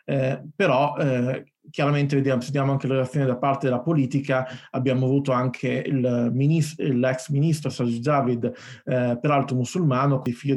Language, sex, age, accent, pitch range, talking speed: Italian, male, 30-49, native, 130-145 Hz, 150 wpm